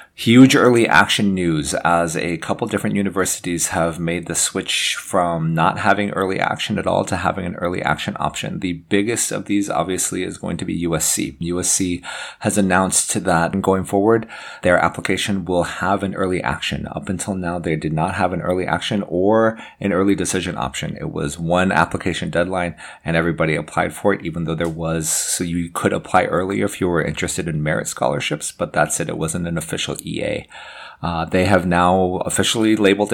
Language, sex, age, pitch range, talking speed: English, male, 30-49, 80-95 Hz, 190 wpm